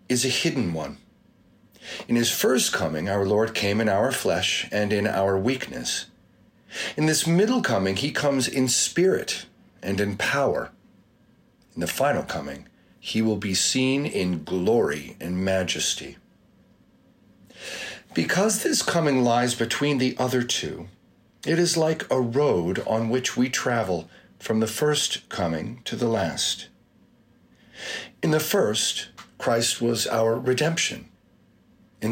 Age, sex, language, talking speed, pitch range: 40-59, male, English, 135 wpm, 105-145 Hz